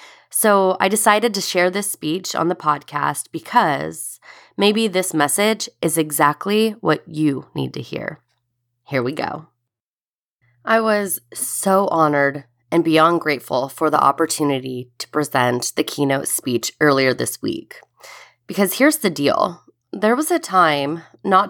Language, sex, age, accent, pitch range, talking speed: English, female, 20-39, American, 140-190 Hz, 140 wpm